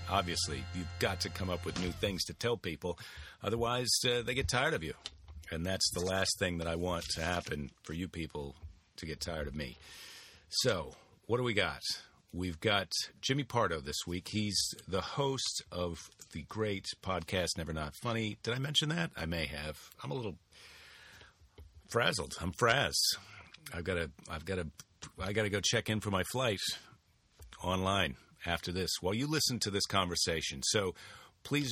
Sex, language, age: male, English, 40-59